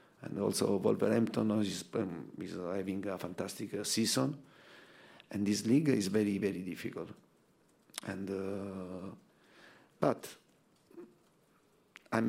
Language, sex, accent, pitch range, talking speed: English, male, Italian, 100-110 Hz, 105 wpm